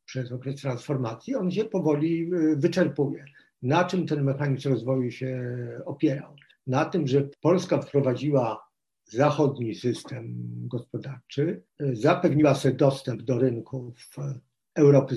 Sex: male